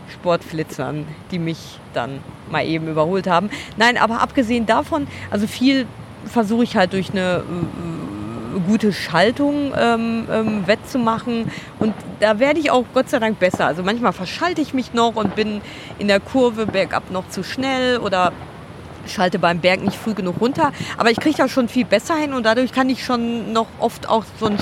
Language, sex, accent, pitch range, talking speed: German, female, German, 180-255 Hz, 185 wpm